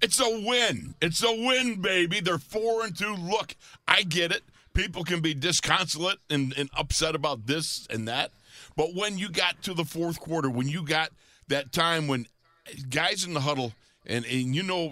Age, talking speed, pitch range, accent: 50-69, 195 wpm, 130-170 Hz, American